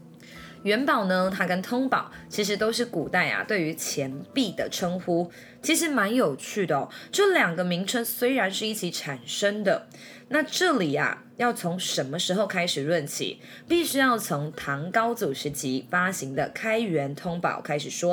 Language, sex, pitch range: Chinese, female, 165-230 Hz